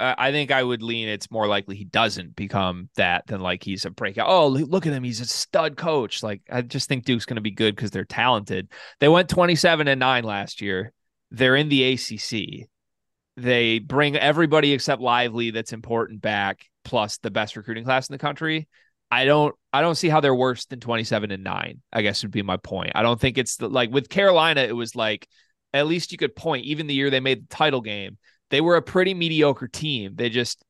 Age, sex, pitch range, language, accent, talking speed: 20-39, male, 105-140 Hz, English, American, 225 wpm